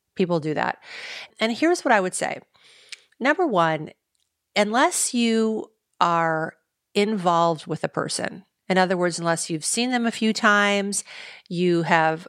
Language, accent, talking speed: English, American, 145 wpm